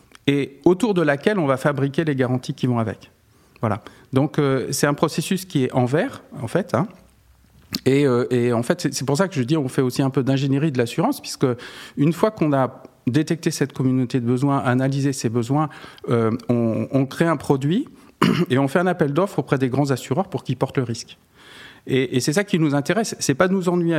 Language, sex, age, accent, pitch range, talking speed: French, male, 50-69, French, 130-170 Hz, 225 wpm